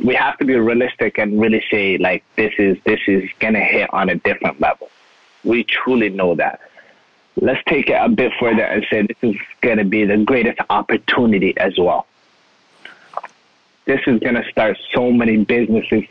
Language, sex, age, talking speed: English, male, 20-39, 185 wpm